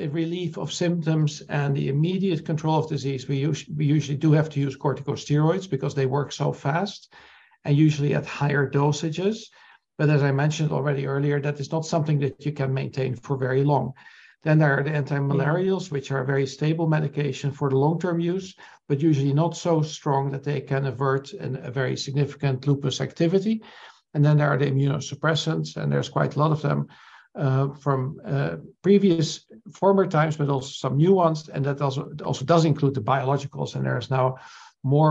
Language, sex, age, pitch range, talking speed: English, male, 60-79, 140-160 Hz, 190 wpm